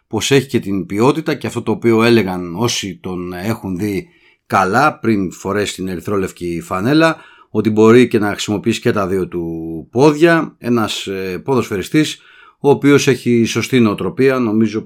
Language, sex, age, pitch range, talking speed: Greek, male, 30-49, 95-120 Hz, 160 wpm